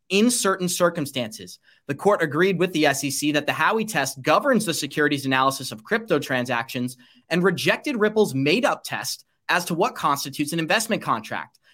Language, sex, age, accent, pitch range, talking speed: English, male, 30-49, American, 145-195 Hz, 170 wpm